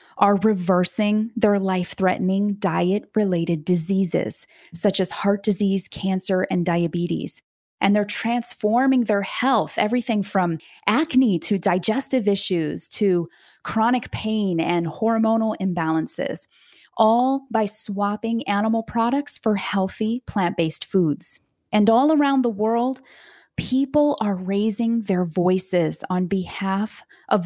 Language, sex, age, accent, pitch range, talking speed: English, female, 20-39, American, 185-225 Hz, 115 wpm